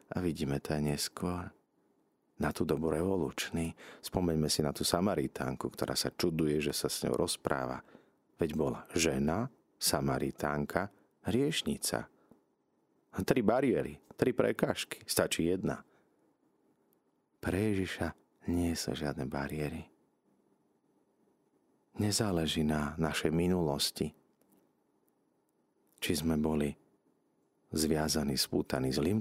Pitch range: 75-90 Hz